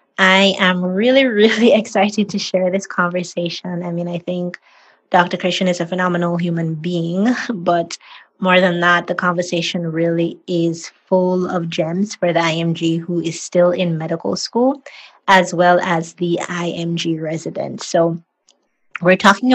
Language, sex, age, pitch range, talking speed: English, female, 20-39, 175-200 Hz, 150 wpm